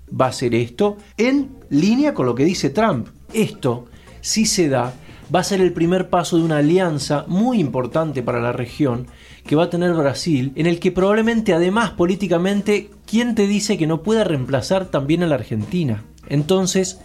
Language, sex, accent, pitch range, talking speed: Spanish, male, Argentinian, 135-185 Hz, 185 wpm